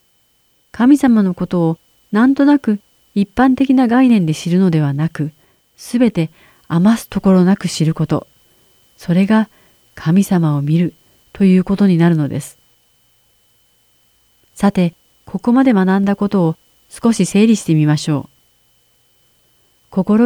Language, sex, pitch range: Japanese, female, 160-205 Hz